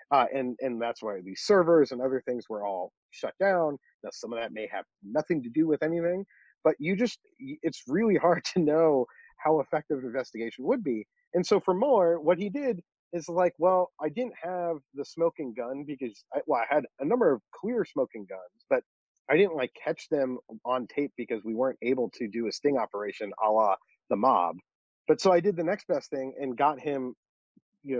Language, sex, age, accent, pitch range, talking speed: English, male, 30-49, American, 120-180 Hz, 210 wpm